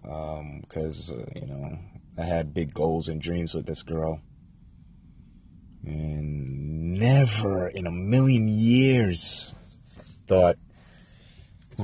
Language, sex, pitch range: English, male, 80-90 Hz